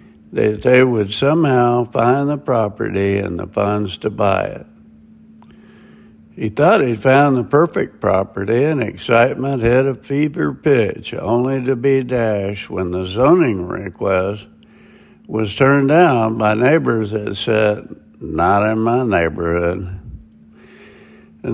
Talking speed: 130 wpm